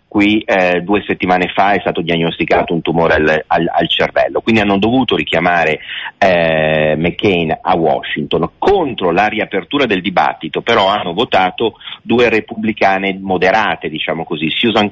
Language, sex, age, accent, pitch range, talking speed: Italian, male, 40-59, native, 90-115 Hz, 145 wpm